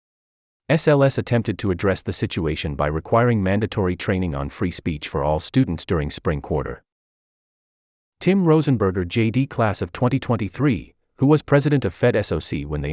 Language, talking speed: English, 155 wpm